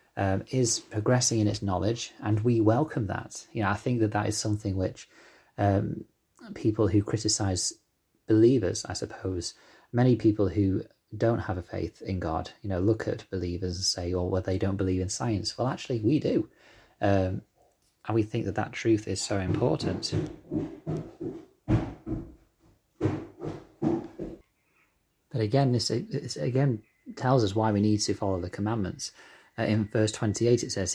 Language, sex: English, male